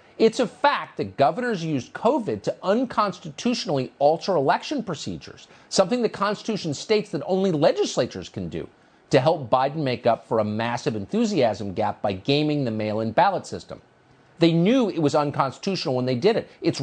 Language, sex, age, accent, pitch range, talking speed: English, male, 50-69, American, 125-190 Hz, 170 wpm